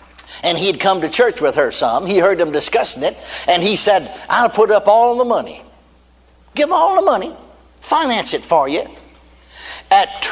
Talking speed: 185 wpm